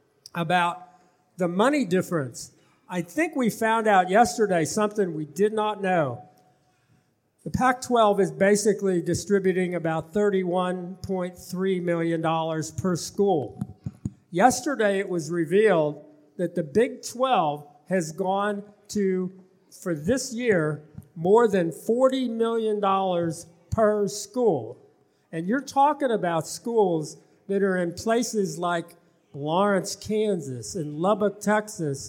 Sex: male